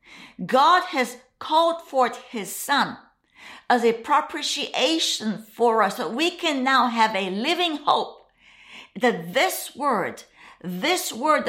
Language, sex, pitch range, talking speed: English, female, 200-265 Hz, 130 wpm